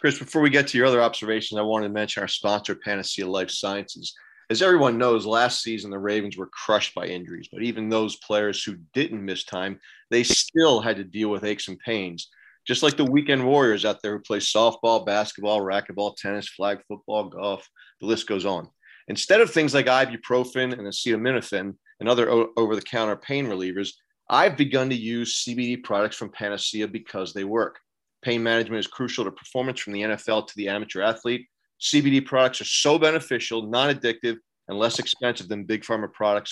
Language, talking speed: English, 185 wpm